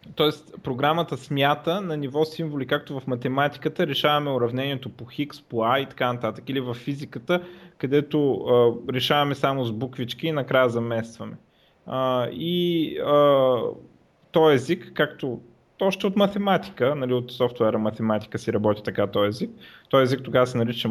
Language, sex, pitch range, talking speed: Bulgarian, male, 120-160 Hz, 145 wpm